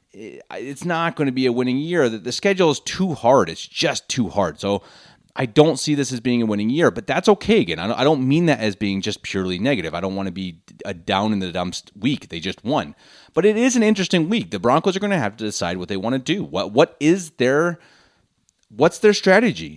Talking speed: 245 wpm